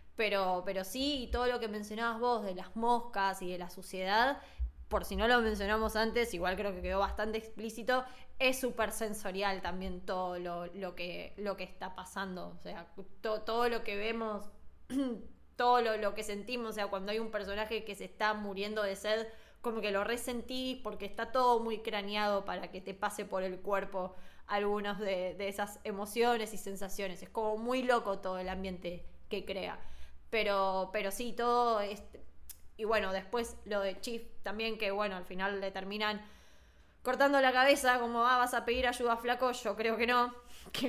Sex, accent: female, Argentinian